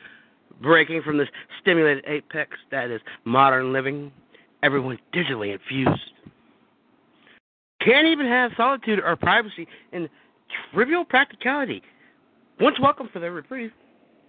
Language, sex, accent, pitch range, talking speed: English, male, American, 155-225 Hz, 110 wpm